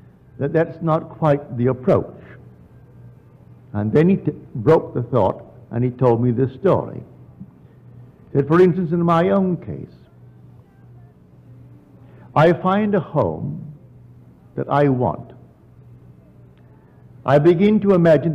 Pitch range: 115-165 Hz